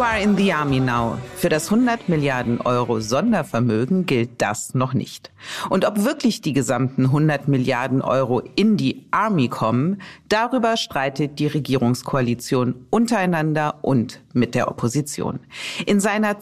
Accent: German